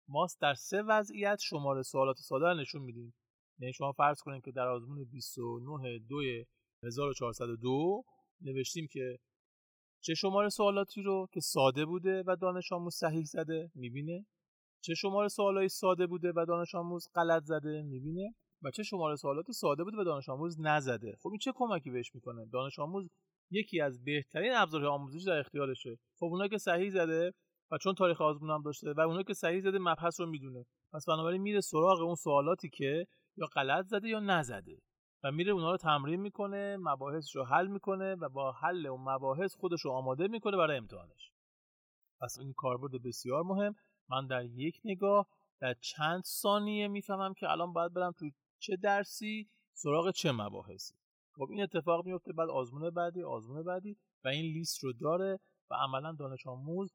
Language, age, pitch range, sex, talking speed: Persian, 30-49, 135-190 Hz, male, 170 wpm